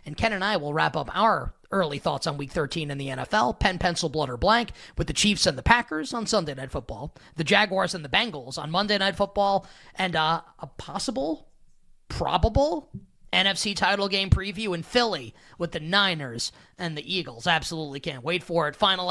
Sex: male